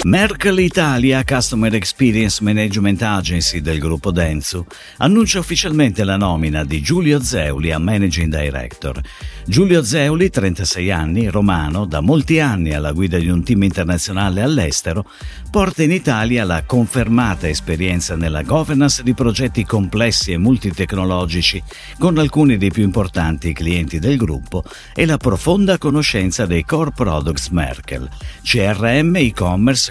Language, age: Italian, 50-69